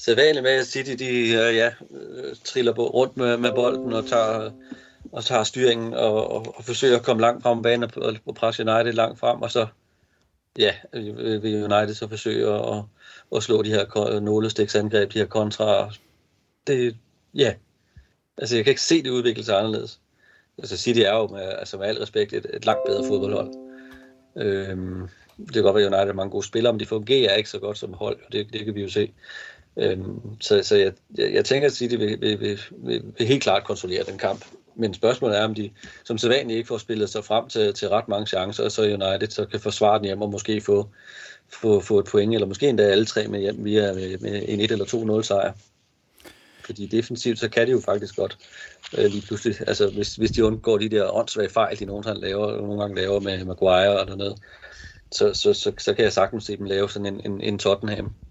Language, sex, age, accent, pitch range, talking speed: Danish, male, 30-49, native, 105-125 Hz, 215 wpm